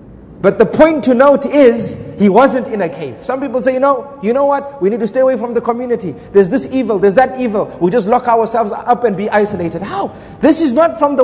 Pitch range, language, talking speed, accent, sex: 210-280 Hz, English, 250 wpm, South African, male